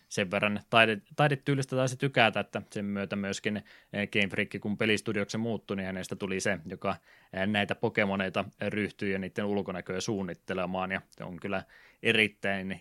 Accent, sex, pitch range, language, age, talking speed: native, male, 95-105 Hz, Finnish, 20-39, 145 wpm